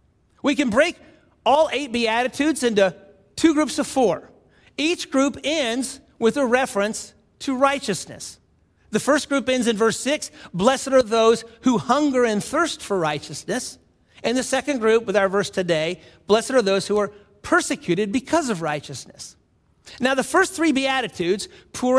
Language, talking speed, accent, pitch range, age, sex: English, 160 wpm, American, 205-285 Hz, 50-69, male